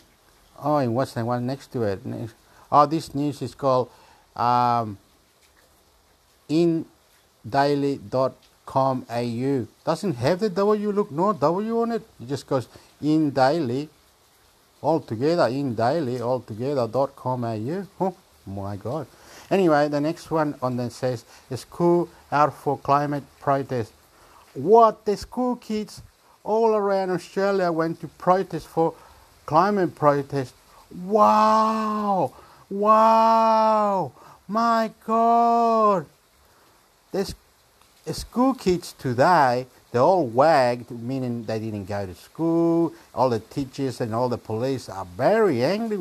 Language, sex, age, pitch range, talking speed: English, male, 60-79, 120-180 Hz, 115 wpm